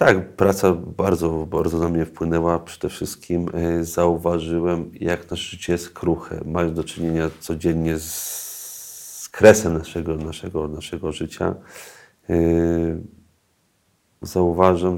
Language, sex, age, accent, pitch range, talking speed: Polish, male, 40-59, native, 85-105 Hz, 105 wpm